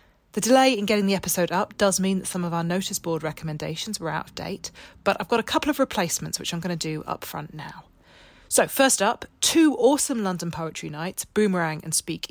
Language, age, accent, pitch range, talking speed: English, 30-49, British, 160-210 Hz, 225 wpm